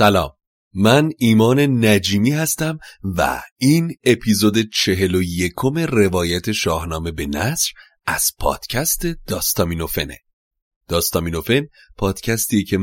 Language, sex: Persian, male